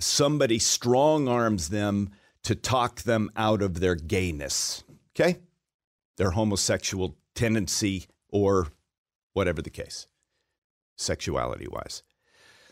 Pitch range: 95-125 Hz